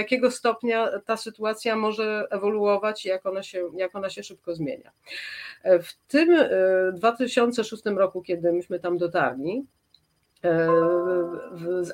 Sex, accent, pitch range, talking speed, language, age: female, native, 180-225 Hz, 105 wpm, Polish, 40-59